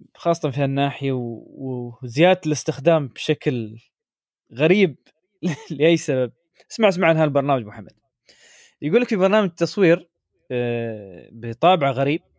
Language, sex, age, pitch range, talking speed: Arabic, male, 20-39, 150-210 Hz, 100 wpm